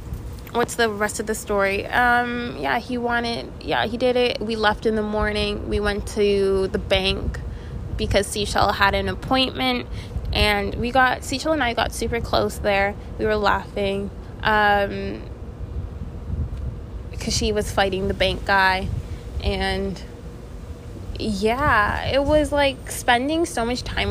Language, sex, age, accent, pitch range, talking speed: English, female, 20-39, American, 195-240 Hz, 145 wpm